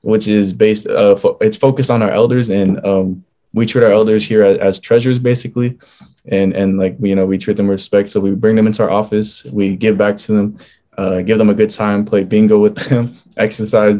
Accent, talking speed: American, 230 wpm